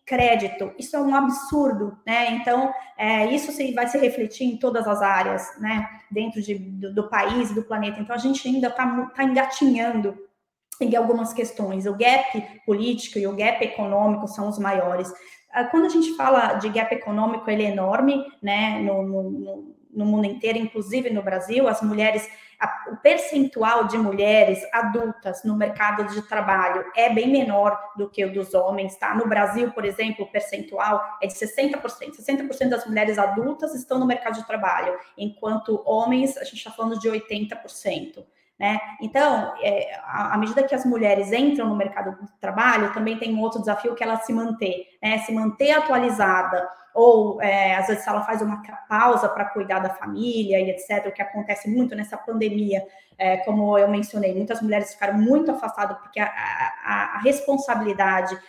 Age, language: 20-39, Portuguese